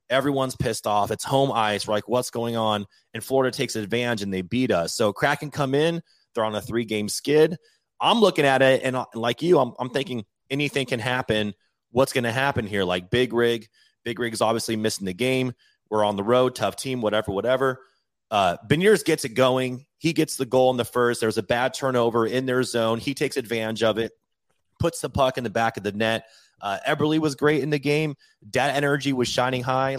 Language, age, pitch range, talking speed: English, 30-49, 105-135 Hz, 220 wpm